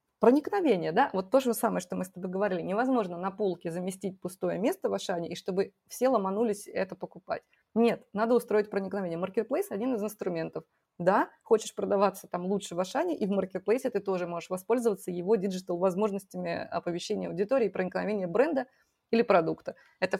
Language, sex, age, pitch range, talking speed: Russian, female, 20-39, 180-225 Hz, 165 wpm